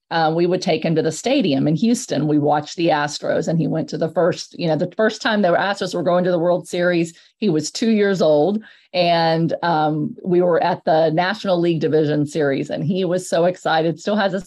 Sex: female